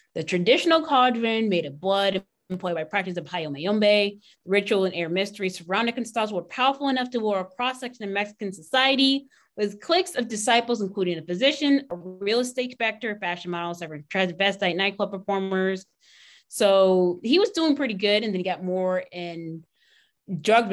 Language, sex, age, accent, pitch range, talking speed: English, female, 20-39, American, 175-225 Hz, 170 wpm